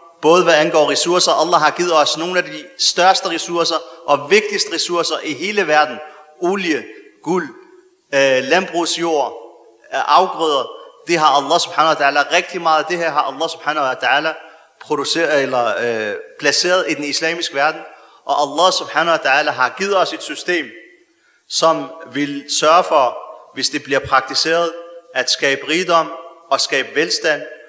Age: 40-59